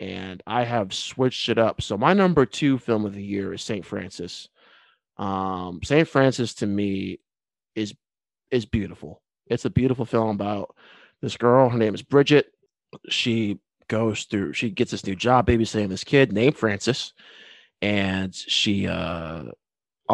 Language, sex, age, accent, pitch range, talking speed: English, male, 20-39, American, 100-125 Hz, 155 wpm